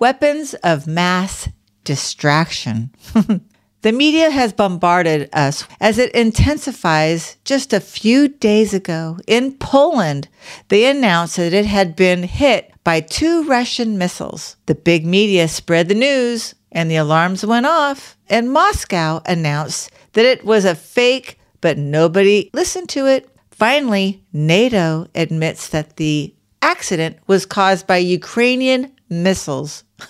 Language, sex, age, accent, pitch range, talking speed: English, female, 50-69, American, 165-235 Hz, 130 wpm